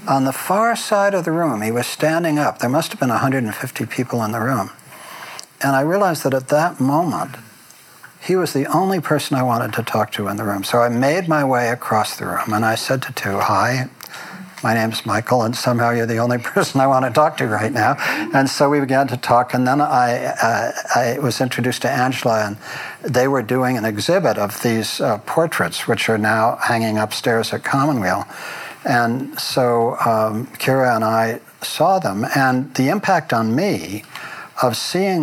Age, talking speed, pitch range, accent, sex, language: 60-79, 200 wpm, 115-150 Hz, American, male, English